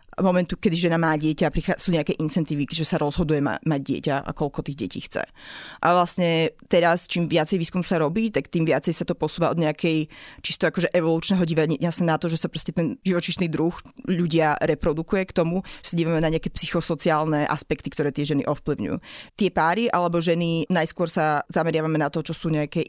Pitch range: 155-175 Hz